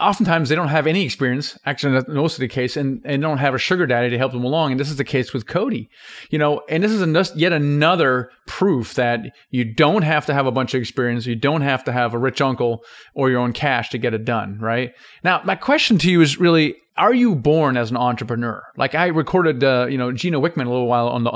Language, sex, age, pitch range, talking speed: English, male, 40-59, 125-155 Hz, 260 wpm